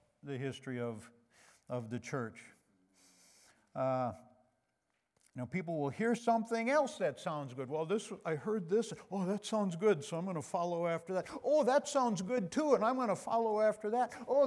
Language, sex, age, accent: English, male, 60-79, American